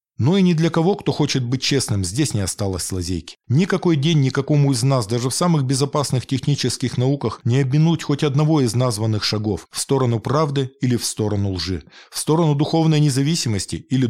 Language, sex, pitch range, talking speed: Russian, male, 110-150 Hz, 185 wpm